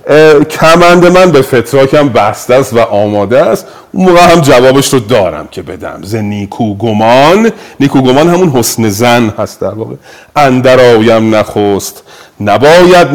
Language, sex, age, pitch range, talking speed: Persian, male, 40-59, 105-150 Hz, 135 wpm